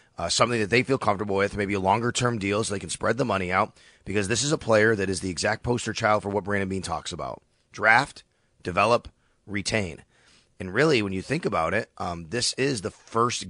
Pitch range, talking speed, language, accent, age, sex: 100-130 Hz, 220 wpm, English, American, 30-49, male